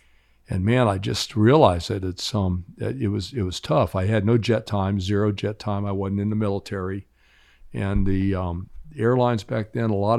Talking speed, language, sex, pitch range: 205 wpm, English, male, 95-120 Hz